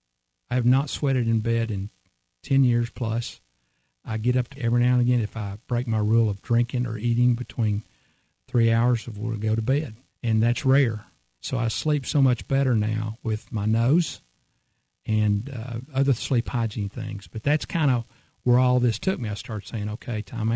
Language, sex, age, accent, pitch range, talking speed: English, male, 50-69, American, 110-130 Hz, 195 wpm